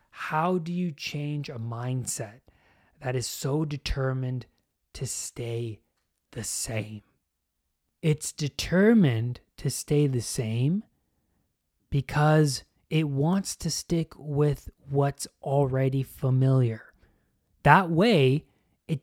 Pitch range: 120-155 Hz